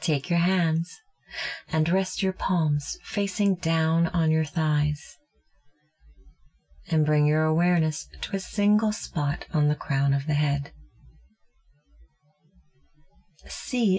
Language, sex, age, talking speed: English, female, 30-49, 115 wpm